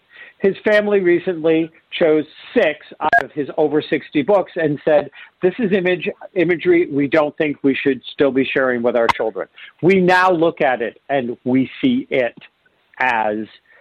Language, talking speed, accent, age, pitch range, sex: English, 165 wpm, American, 50-69, 150-200 Hz, male